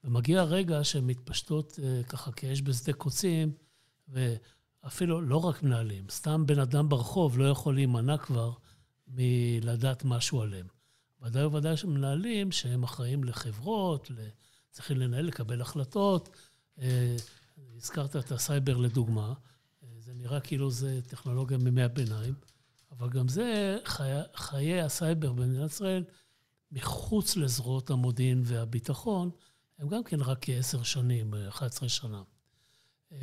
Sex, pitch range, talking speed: male, 125-150 Hz, 115 wpm